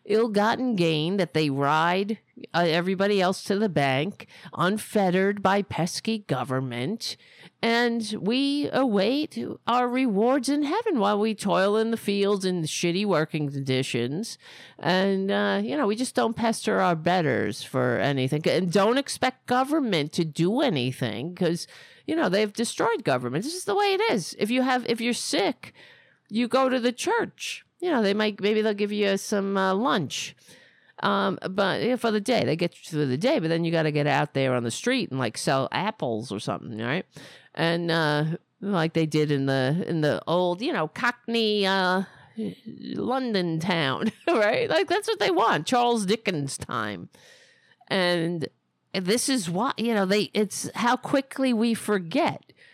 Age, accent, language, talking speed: 50-69, American, English, 175 wpm